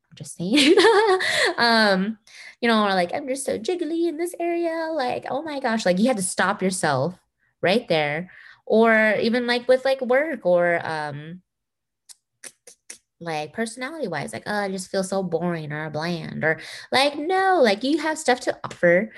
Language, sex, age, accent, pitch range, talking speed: English, female, 20-39, American, 165-245 Hz, 170 wpm